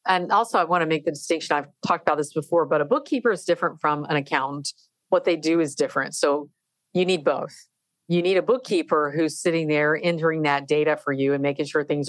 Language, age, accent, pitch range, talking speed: English, 50-69, American, 145-165 Hz, 230 wpm